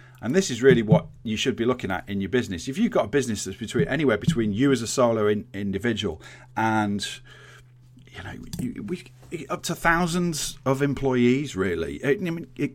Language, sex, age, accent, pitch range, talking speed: English, male, 30-49, British, 110-140 Hz, 200 wpm